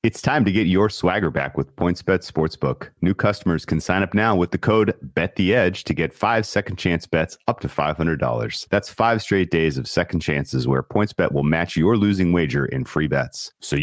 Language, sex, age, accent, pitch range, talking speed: English, male, 30-49, American, 80-95 Hz, 205 wpm